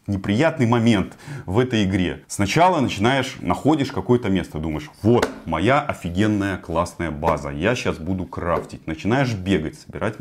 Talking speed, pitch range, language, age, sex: 135 wpm, 95-130 Hz, Russian, 30-49, male